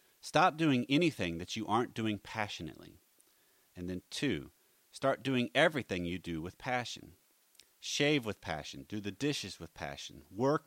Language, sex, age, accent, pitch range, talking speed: English, male, 30-49, American, 95-145 Hz, 150 wpm